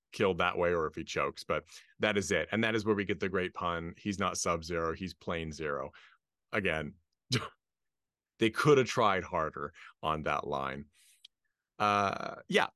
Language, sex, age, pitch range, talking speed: English, male, 30-49, 80-110 Hz, 175 wpm